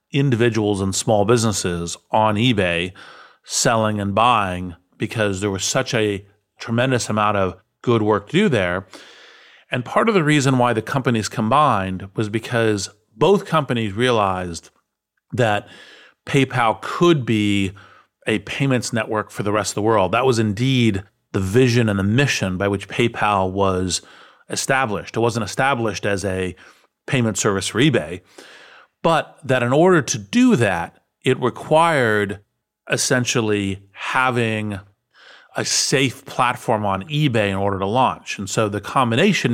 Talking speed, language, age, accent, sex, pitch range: 145 wpm, English, 40-59, American, male, 100-125 Hz